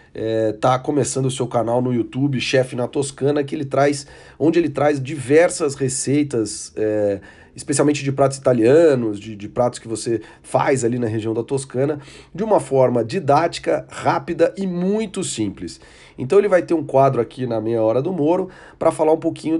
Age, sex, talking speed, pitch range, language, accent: 40-59, male, 180 wpm, 115-145 Hz, Portuguese, Brazilian